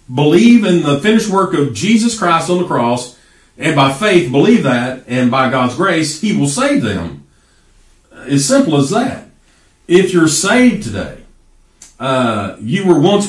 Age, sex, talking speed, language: 40-59, male, 165 wpm, English